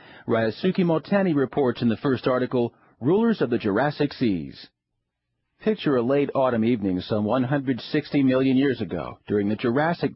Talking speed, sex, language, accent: 150 wpm, male, English, American